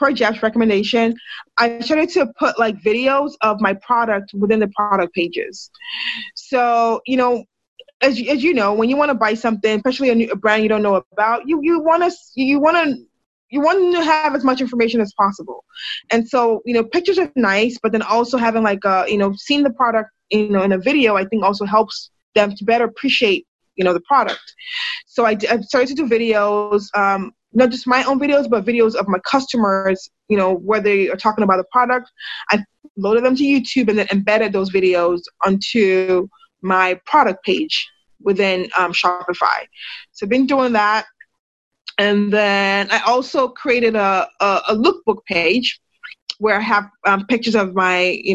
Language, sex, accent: English, female, American